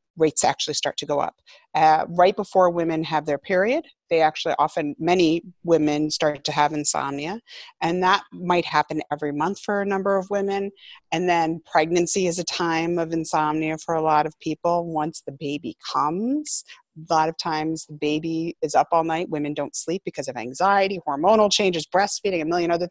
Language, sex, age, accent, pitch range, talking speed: English, female, 30-49, American, 155-200 Hz, 190 wpm